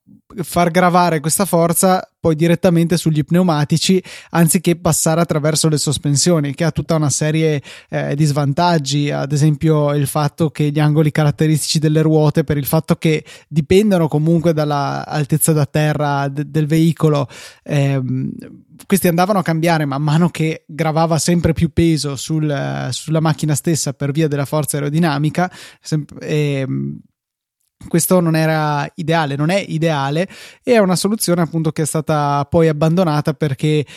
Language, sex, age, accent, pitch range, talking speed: Italian, male, 20-39, native, 150-170 Hz, 145 wpm